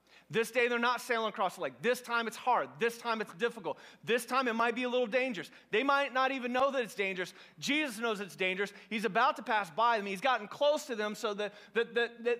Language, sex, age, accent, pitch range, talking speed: English, male, 30-49, American, 190-245 Hz, 240 wpm